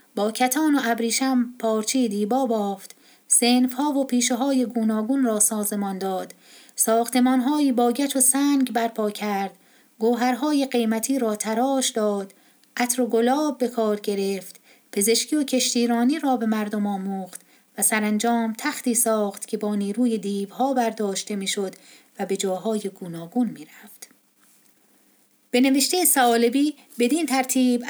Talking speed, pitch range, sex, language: 130 wpm, 220-260 Hz, female, Persian